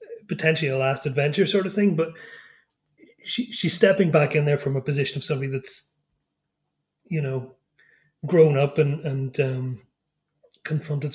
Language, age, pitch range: English, 30-49, 145-185 Hz